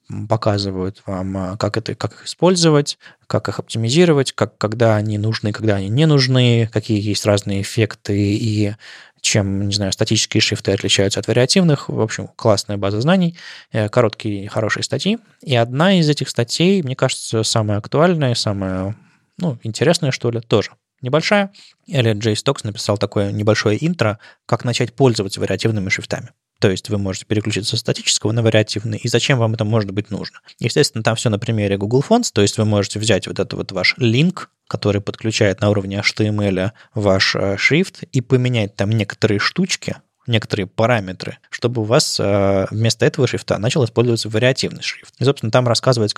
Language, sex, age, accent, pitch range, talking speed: Russian, male, 20-39, native, 105-130 Hz, 170 wpm